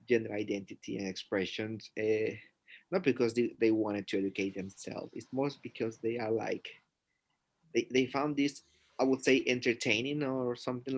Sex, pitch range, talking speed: male, 115-135 Hz, 160 wpm